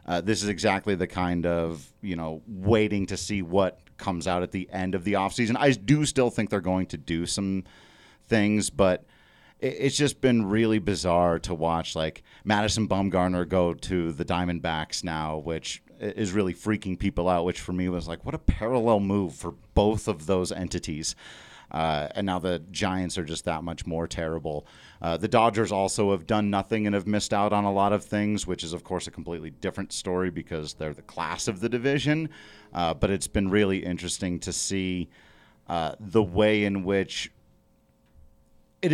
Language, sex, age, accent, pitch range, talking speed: English, male, 30-49, American, 85-105 Hz, 190 wpm